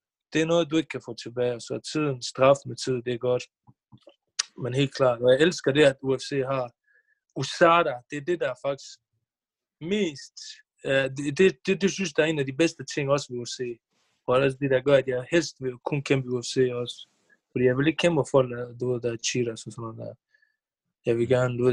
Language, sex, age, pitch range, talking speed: Danish, male, 20-39, 125-140 Hz, 215 wpm